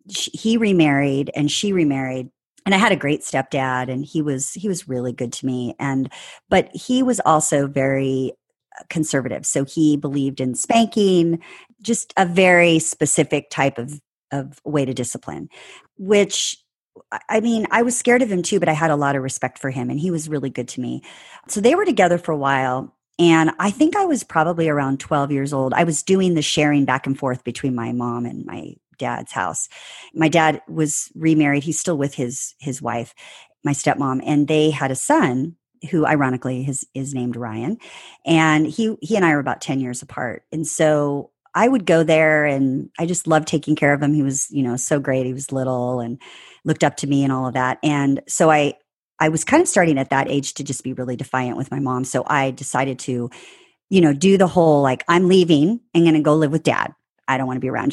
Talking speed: 215 wpm